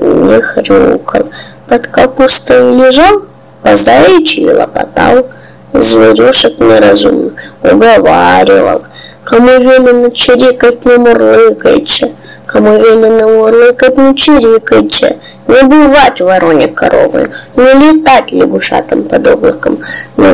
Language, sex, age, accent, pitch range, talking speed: Russian, female, 20-39, native, 235-300 Hz, 90 wpm